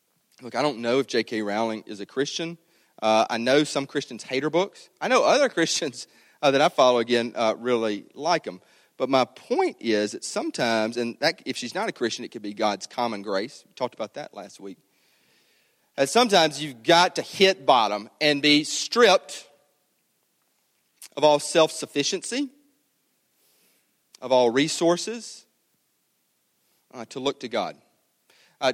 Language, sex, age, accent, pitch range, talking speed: English, male, 40-59, American, 110-155 Hz, 165 wpm